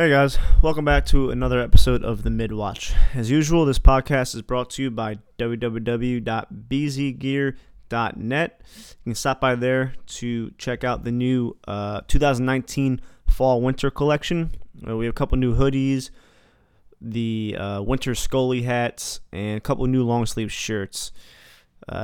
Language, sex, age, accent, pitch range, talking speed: English, male, 20-39, American, 110-135 Hz, 145 wpm